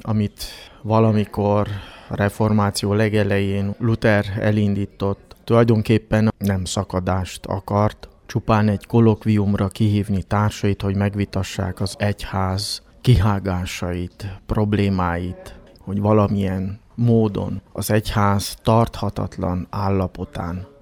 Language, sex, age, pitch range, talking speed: Hungarian, male, 20-39, 95-115 Hz, 85 wpm